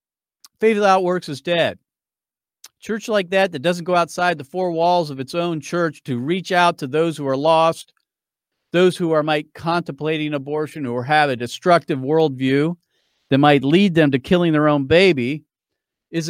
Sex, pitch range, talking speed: male, 150-190 Hz, 175 wpm